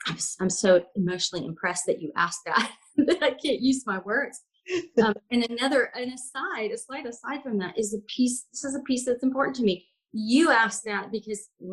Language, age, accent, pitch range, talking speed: English, 30-49, American, 185-245 Hz, 205 wpm